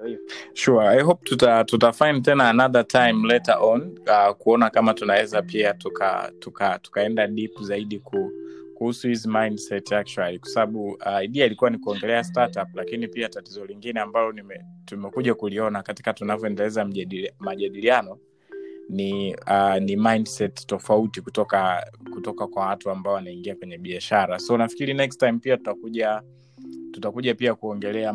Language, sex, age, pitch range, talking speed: Swahili, male, 20-39, 100-115 Hz, 140 wpm